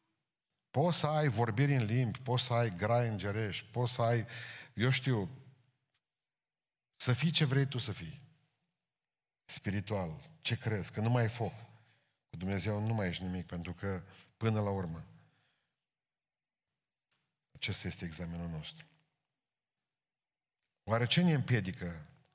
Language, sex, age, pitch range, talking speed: Romanian, male, 50-69, 100-135 Hz, 135 wpm